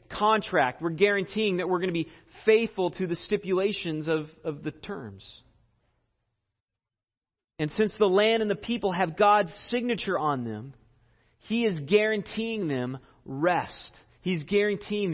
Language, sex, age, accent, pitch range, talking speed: English, male, 30-49, American, 125-215 Hz, 140 wpm